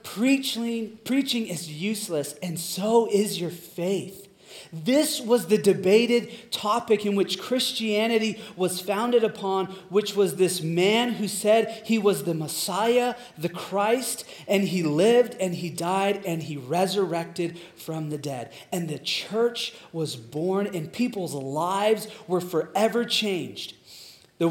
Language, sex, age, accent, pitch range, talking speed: English, male, 30-49, American, 170-215 Hz, 135 wpm